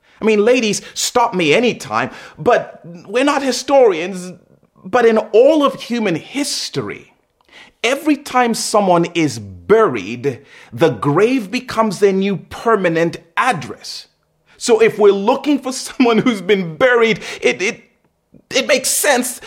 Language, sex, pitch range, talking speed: English, male, 165-250 Hz, 130 wpm